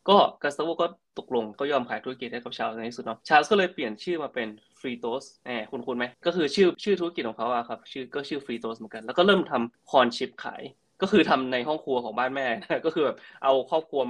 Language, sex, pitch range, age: Thai, male, 120-150 Hz, 20-39